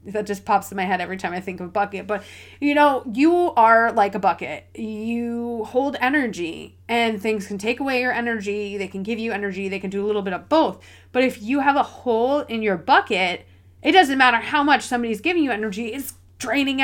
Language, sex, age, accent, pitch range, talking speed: English, female, 30-49, American, 195-275 Hz, 225 wpm